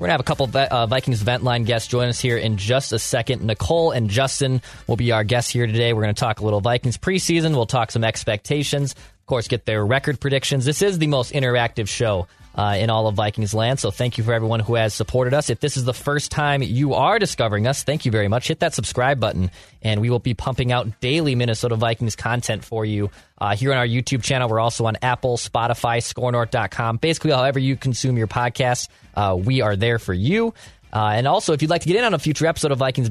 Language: English